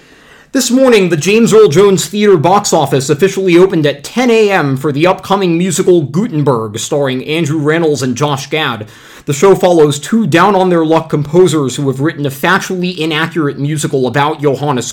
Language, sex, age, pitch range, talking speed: English, male, 30-49, 140-185 Hz, 155 wpm